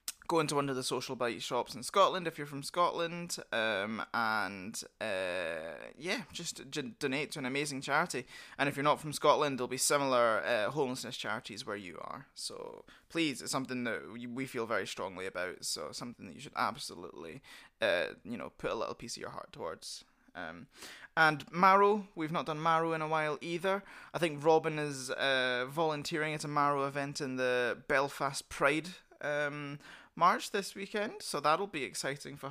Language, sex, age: English, male, 20-39